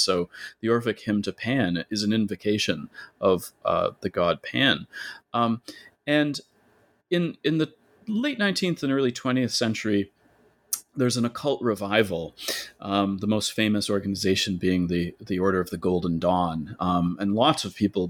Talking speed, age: 155 wpm, 30-49